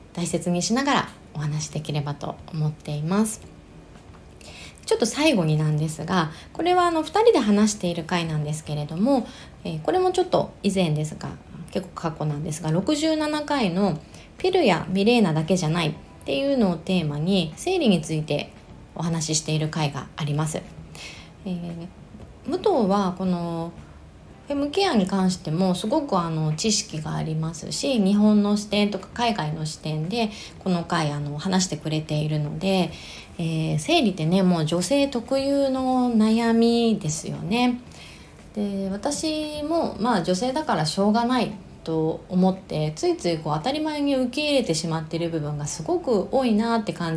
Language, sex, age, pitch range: Japanese, female, 20-39, 160-230 Hz